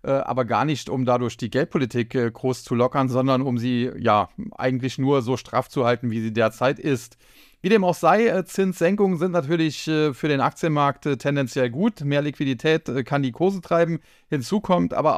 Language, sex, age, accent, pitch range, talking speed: German, male, 30-49, German, 125-150 Hz, 180 wpm